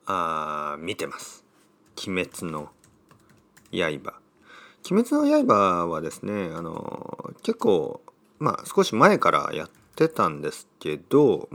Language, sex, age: Japanese, male, 40-59